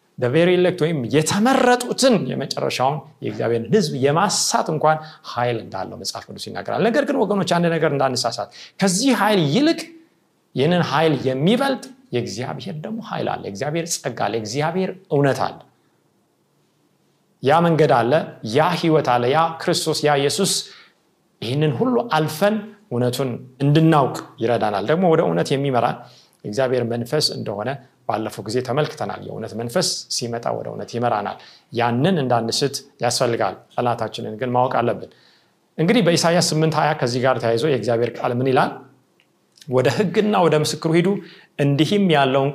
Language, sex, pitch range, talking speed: Amharic, male, 125-180 Hz, 90 wpm